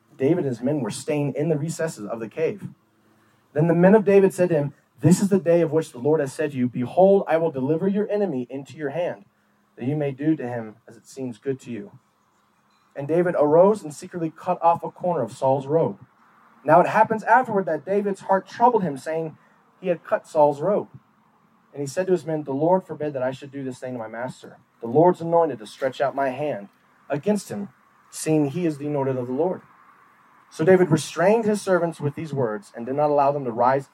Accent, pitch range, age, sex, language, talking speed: American, 135-185 Hz, 30-49, male, English, 230 wpm